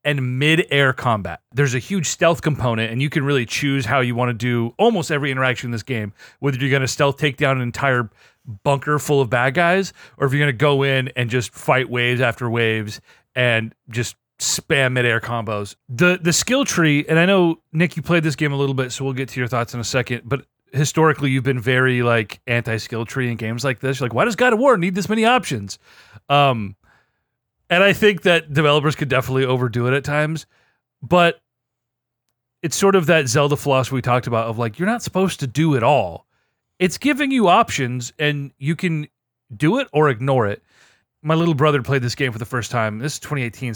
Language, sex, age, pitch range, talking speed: English, male, 30-49, 125-165 Hz, 215 wpm